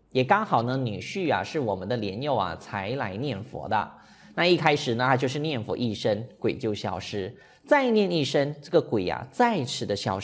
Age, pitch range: 20-39, 115-175 Hz